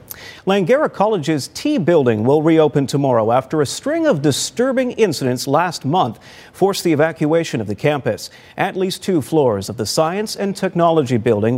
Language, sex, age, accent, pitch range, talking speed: English, male, 40-59, American, 135-190 Hz, 160 wpm